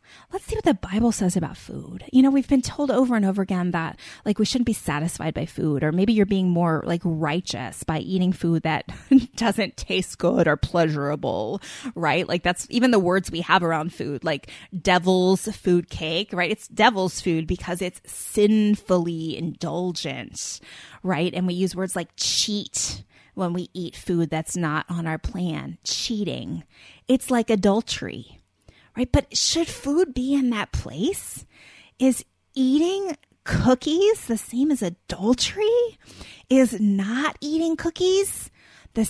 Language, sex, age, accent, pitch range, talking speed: English, female, 20-39, American, 175-260 Hz, 160 wpm